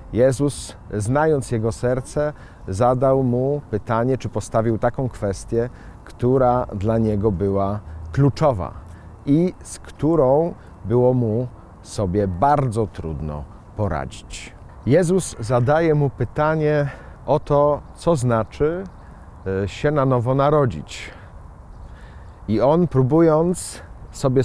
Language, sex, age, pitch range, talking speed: Polish, male, 40-59, 100-140 Hz, 100 wpm